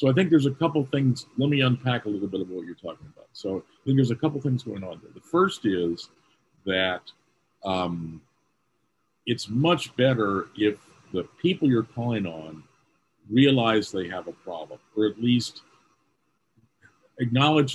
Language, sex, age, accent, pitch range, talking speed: English, male, 50-69, American, 95-135 Hz, 170 wpm